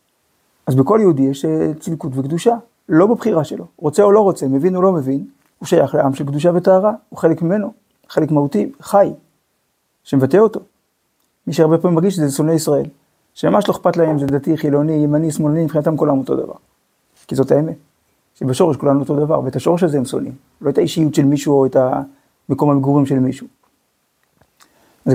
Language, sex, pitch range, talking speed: Hebrew, male, 140-180 Hz, 175 wpm